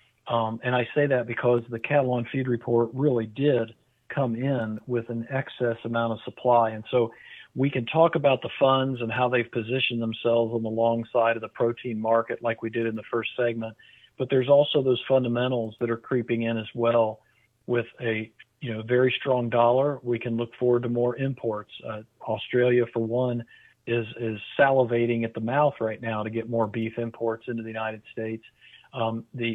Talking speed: 195 wpm